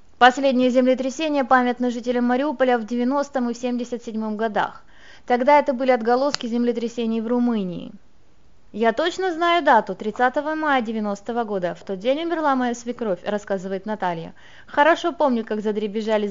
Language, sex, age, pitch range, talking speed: Russian, female, 20-39, 215-270 Hz, 145 wpm